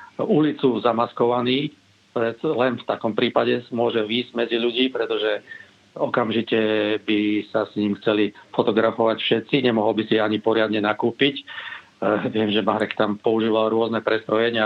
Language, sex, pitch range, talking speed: Slovak, male, 105-120 Hz, 130 wpm